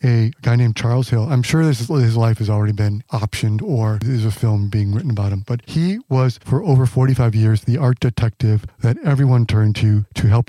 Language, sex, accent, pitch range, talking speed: English, male, American, 110-125 Hz, 210 wpm